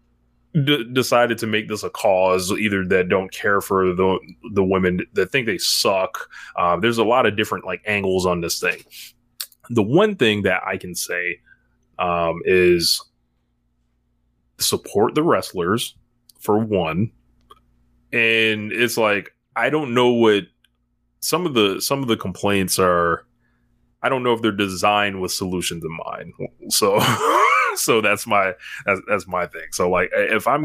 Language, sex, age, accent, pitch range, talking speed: English, male, 20-39, American, 90-115 Hz, 155 wpm